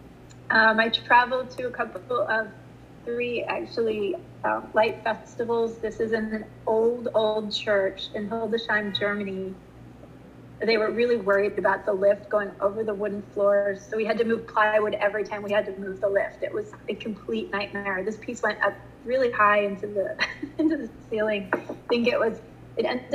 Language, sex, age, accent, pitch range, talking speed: English, female, 30-49, American, 205-235 Hz, 175 wpm